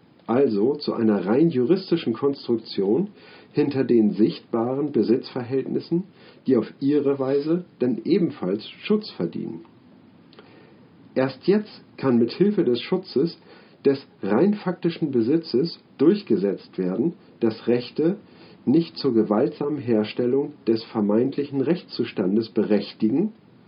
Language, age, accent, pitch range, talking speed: German, 50-69, German, 115-165 Hz, 100 wpm